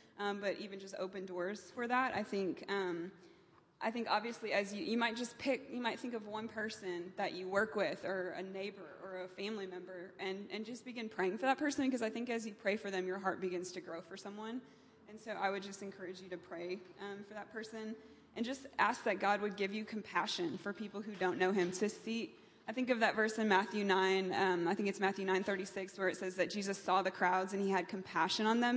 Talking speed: 250 wpm